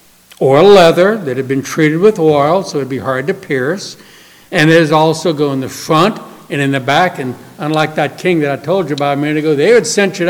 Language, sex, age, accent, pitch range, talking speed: English, male, 60-79, American, 150-195 Hz, 245 wpm